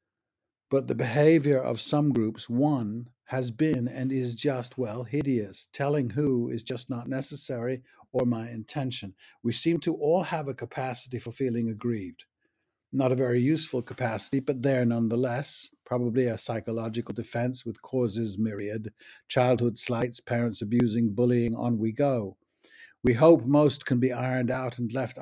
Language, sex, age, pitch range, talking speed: English, male, 60-79, 115-130 Hz, 155 wpm